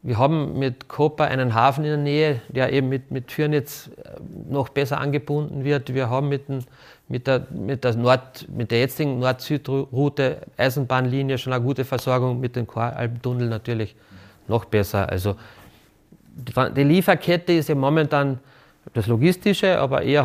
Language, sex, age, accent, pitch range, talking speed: German, male, 30-49, German, 120-145 Hz, 150 wpm